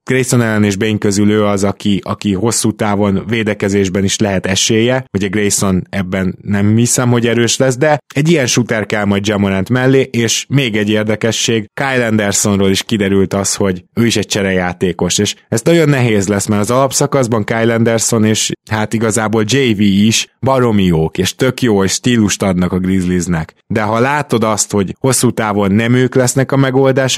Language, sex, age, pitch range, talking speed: Hungarian, male, 20-39, 100-125 Hz, 180 wpm